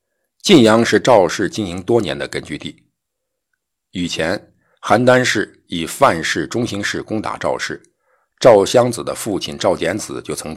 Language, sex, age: Chinese, male, 50-69